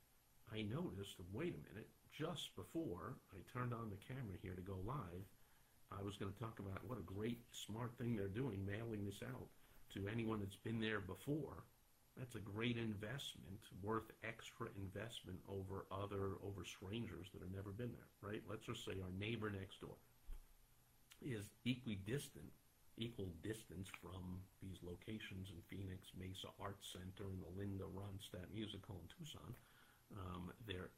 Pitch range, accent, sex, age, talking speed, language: 95-120 Hz, American, male, 50-69, 160 wpm, English